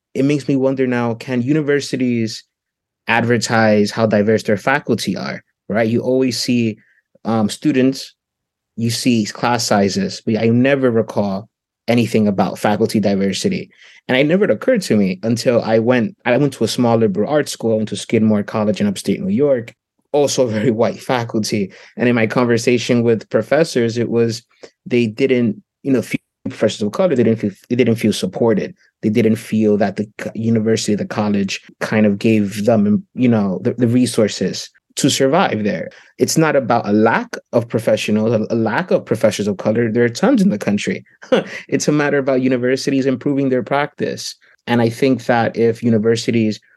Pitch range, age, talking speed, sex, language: 110-130 Hz, 20-39, 175 wpm, male, English